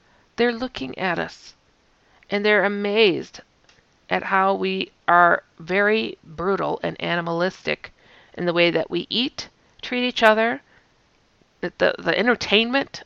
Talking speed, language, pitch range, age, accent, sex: 125 wpm, English, 175-235 Hz, 40-59, American, female